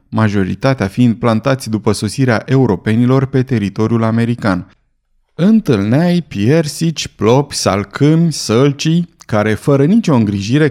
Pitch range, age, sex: 110-145 Hz, 30-49, male